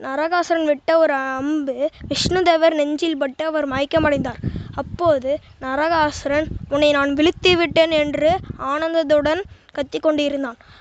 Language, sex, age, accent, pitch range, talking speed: Tamil, female, 20-39, native, 285-320 Hz, 110 wpm